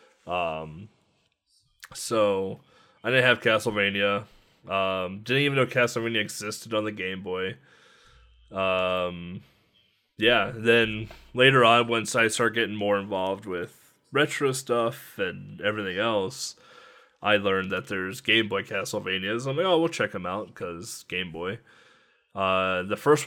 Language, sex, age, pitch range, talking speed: English, male, 20-39, 95-120 Hz, 140 wpm